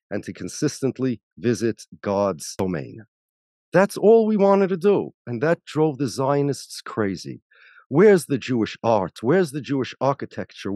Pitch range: 140-205 Hz